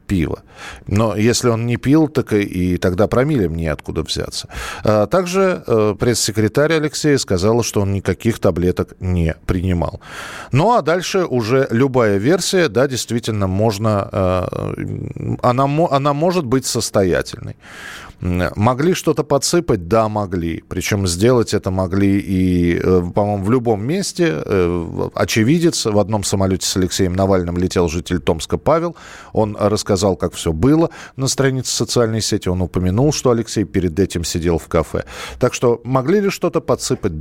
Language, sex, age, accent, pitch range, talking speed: Russian, male, 40-59, native, 95-135 Hz, 135 wpm